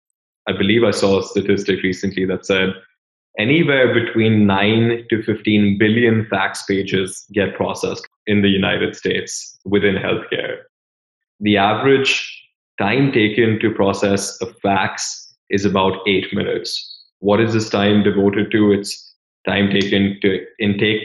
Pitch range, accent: 100-110 Hz, Indian